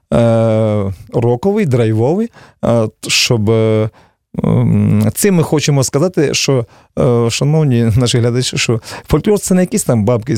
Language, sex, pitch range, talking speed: Russian, male, 110-145 Hz, 110 wpm